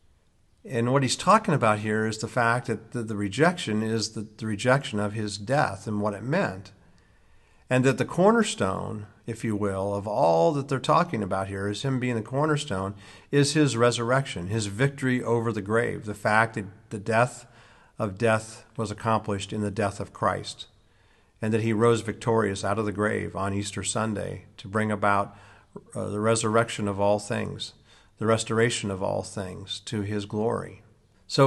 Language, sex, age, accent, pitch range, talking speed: English, male, 50-69, American, 100-115 Hz, 175 wpm